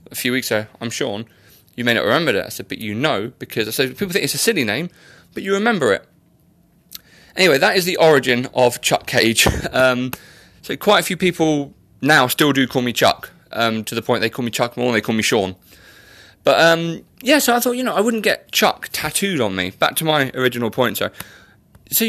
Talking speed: 230 wpm